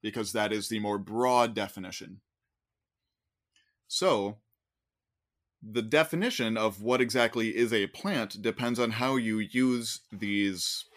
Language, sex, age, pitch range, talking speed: English, male, 20-39, 105-130 Hz, 120 wpm